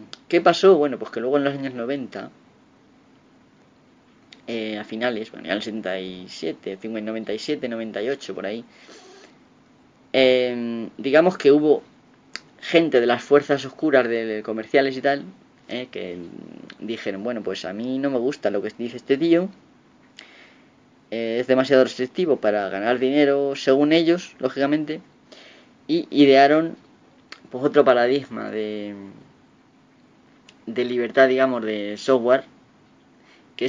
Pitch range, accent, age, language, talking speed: 110-140 Hz, Spanish, 20-39, Spanish, 125 wpm